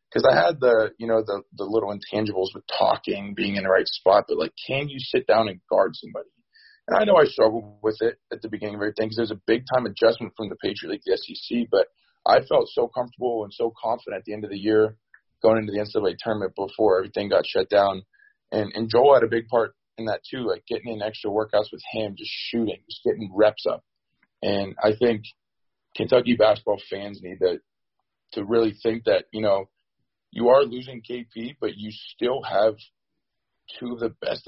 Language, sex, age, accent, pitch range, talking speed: English, male, 20-39, American, 105-130 Hz, 210 wpm